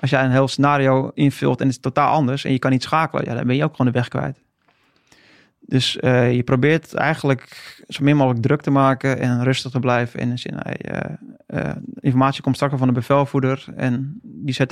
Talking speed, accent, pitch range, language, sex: 215 wpm, Dutch, 125-135 Hz, Dutch, male